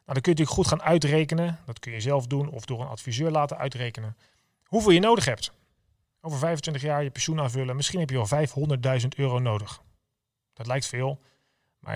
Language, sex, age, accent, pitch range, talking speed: Dutch, male, 40-59, Dutch, 125-155 Hz, 195 wpm